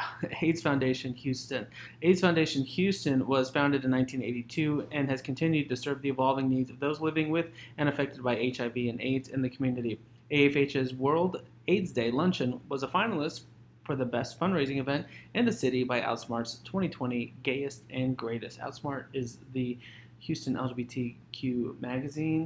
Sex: male